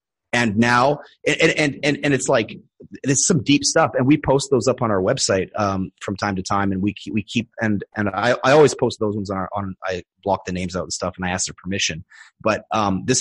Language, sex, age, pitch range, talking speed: English, male, 30-49, 100-120 Hz, 255 wpm